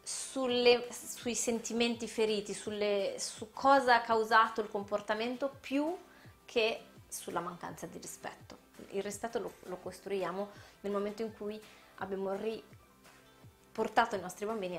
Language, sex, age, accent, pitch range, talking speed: Italian, female, 20-39, native, 190-235 Hz, 120 wpm